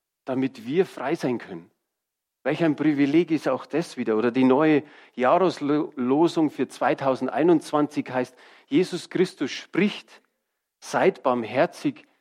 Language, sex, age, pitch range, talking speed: German, male, 40-59, 125-155 Hz, 120 wpm